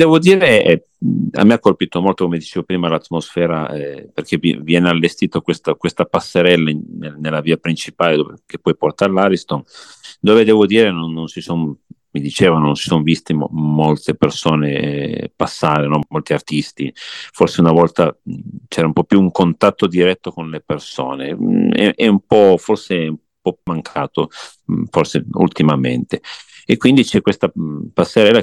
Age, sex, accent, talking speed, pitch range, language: 50-69, male, native, 170 wpm, 75-95 Hz, Italian